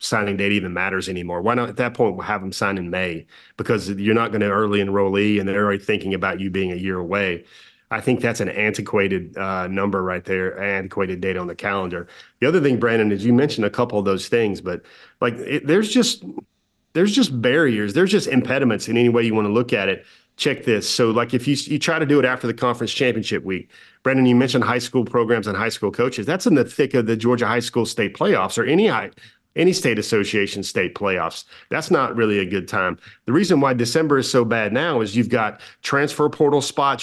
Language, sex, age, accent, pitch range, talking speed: English, male, 30-49, American, 100-125 Hz, 235 wpm